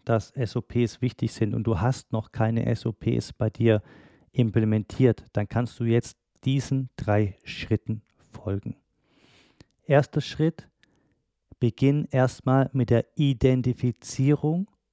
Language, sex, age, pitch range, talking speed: German, male, 40-59, 110-135 Hz, 115 wpm